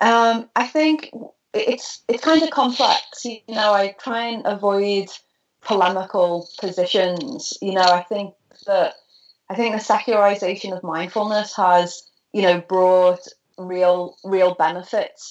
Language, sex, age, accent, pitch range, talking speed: English, female, 30-49, British, 175-205 Hz, 135 wpm